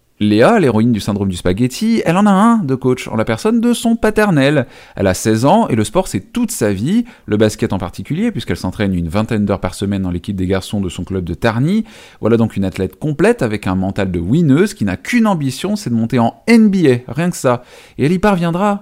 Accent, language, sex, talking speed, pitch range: French, French, male, 240 wpm, 100-155 Hz